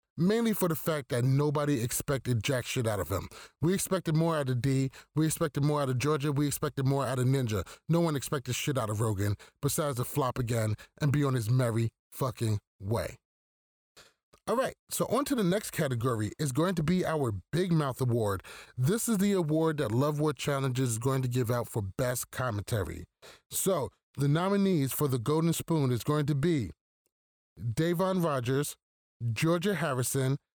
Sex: male